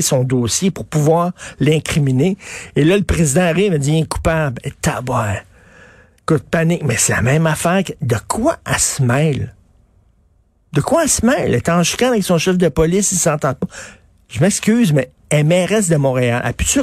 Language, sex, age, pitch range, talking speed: French, male, 60-79, 130-180 Hz, 215 wpm